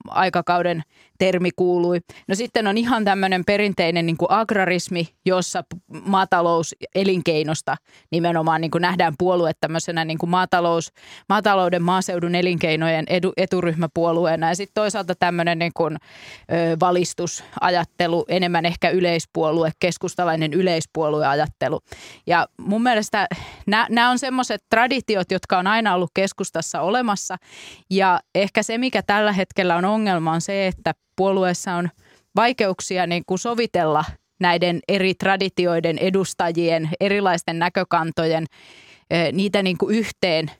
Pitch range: 170-195 Hz